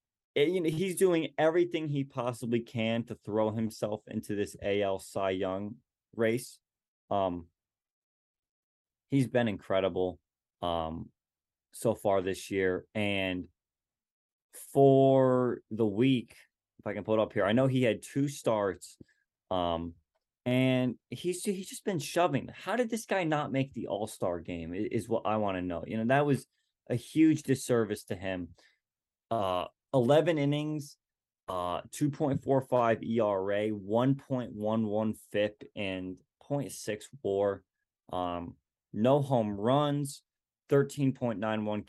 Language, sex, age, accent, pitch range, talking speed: English, male, 20-39, American, 100-135 Hz, 130 wpm